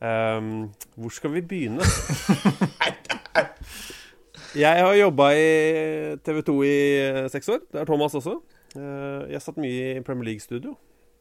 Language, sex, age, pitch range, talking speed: English, male, 30-49, 110-145 Hz, 140 wpm